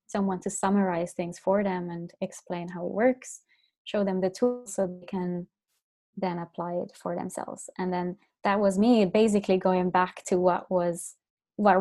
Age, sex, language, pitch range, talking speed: 20-39, female, English, 180-205 Hz, 180 wpm